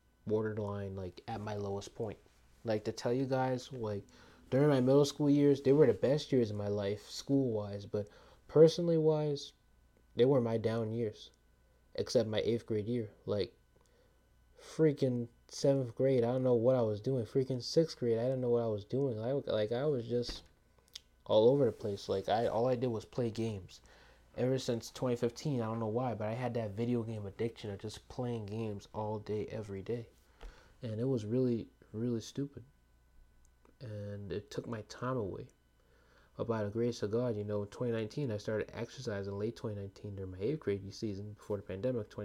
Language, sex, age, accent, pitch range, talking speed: English, male, 20-39, American, 100-125 Hz, 190 wpm